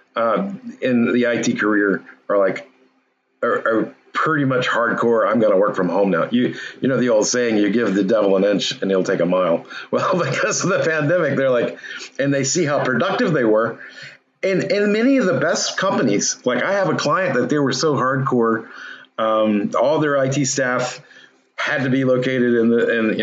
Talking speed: 210 wpm